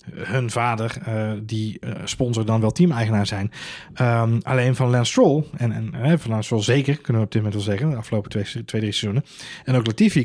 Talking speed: 225 wpm